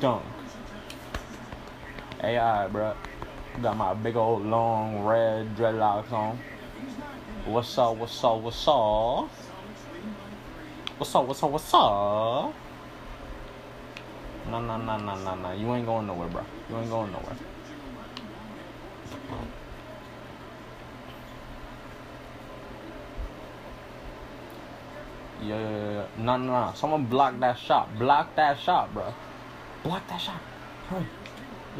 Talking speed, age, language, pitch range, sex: 100 wpm, 20-39, English, 110-150 Hz, male